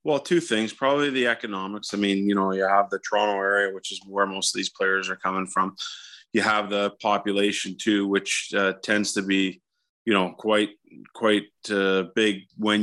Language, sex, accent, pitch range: English, male, American, 95-105 Hz